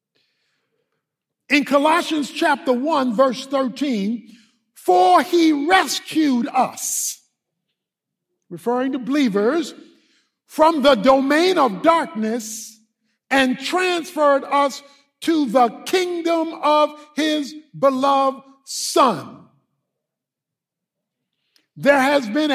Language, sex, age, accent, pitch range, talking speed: English, male, 50-69, American, 250-310 Hz, 80 wpm